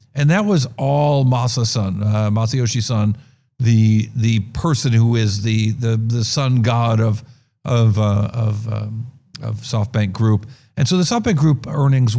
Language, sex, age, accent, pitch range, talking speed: English, male, 50-69, American, 115-145 Hz, 155 wpm